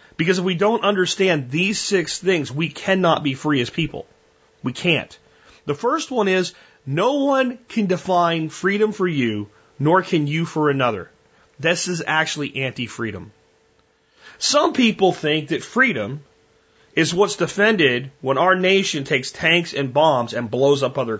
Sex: male